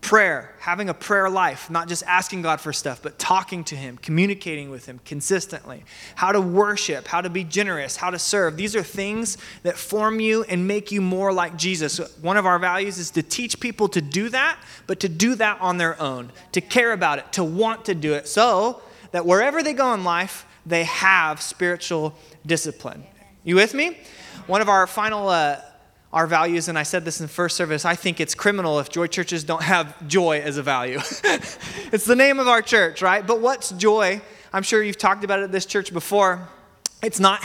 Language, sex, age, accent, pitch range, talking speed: English, male, 20-39, American, 165-200 Hz, 210 wpm